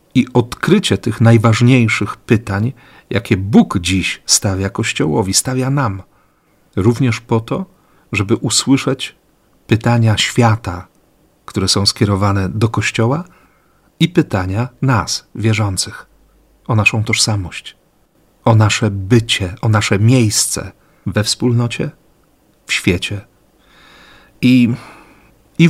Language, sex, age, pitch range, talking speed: Polish, male, 40-59, 100-120 Hz, 100 wpm